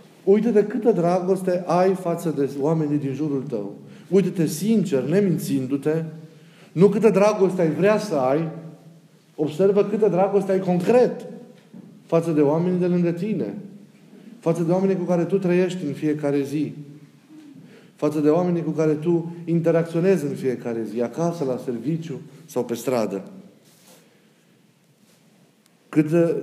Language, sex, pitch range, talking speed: Romanian, male, 145-185 Hz, 135 wpm